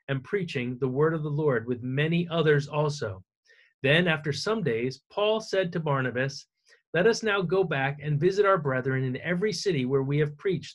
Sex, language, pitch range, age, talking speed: male, English, 125-155 Hz, 30-49, 195 wpm